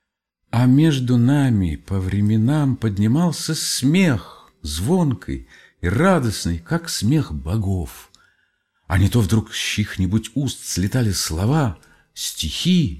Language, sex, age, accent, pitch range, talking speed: Russian, male, 50-69, native, 90-130 Hz, 110 wpm